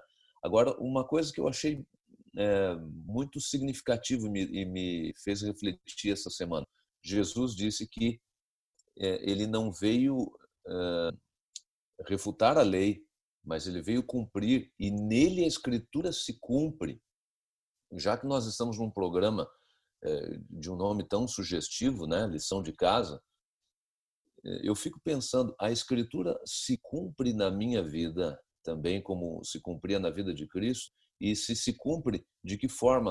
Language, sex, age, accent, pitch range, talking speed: Portuguese, male, 50-69, Brazilian, 95-125 Hz, 140 wpm